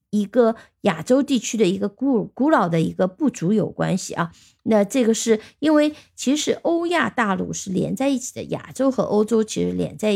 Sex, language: female, Chinese